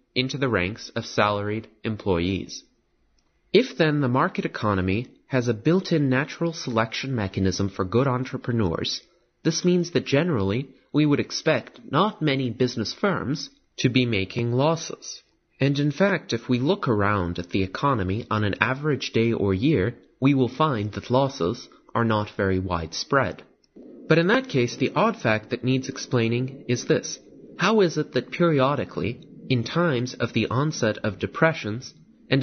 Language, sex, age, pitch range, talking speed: English, male, 30-49, 105-155 Hz, 155 wpm